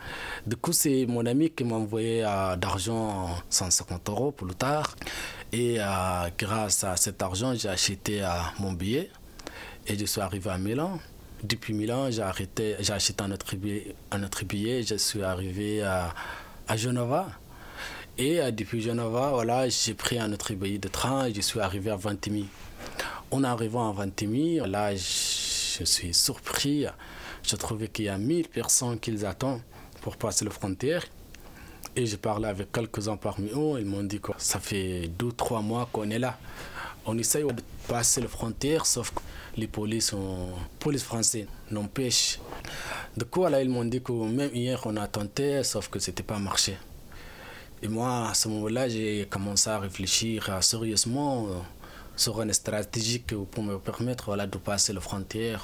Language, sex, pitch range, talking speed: French, male, 100-120 Hz, 175 wpm